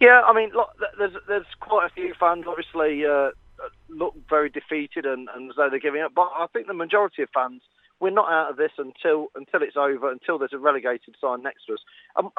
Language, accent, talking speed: English, British, 225 wpm